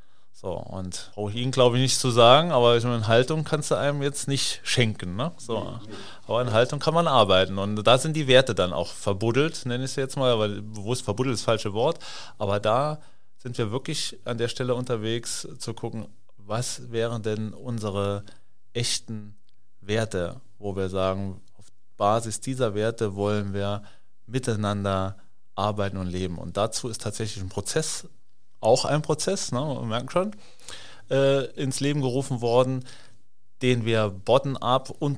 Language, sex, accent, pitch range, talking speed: German, male, German, 105-130 Hz, 165 wpm